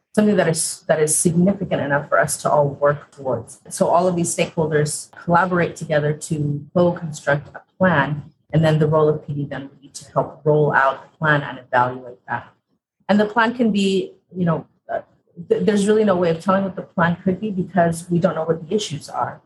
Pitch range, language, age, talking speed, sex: 150-185 Hz, English, 30-49, 215 wpm, female